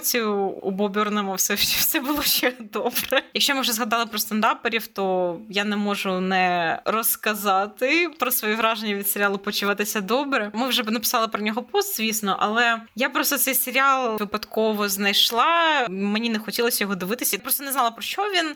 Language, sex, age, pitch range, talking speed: Ukrainian, female, 20-39, 190-245 Hz, 170 wpm